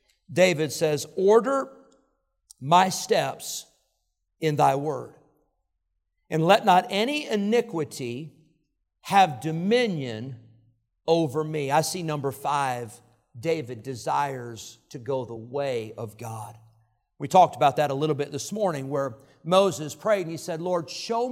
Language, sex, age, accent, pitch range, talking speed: English, male, 50-69, American, 130-215 Hz, 130 wpm